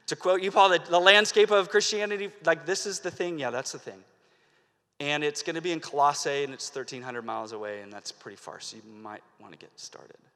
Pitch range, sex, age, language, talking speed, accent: 115-170 Hz, male, 30-49, English, 225 wpm, American